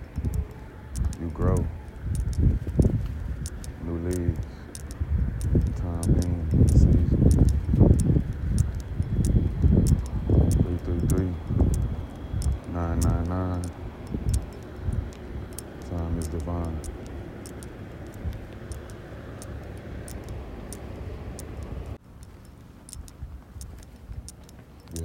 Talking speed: 40 wpm